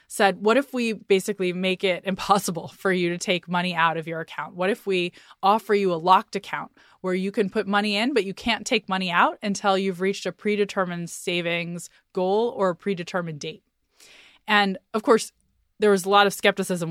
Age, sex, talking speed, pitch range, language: 20-39, female, 200 wpm, 175-215 Hz, English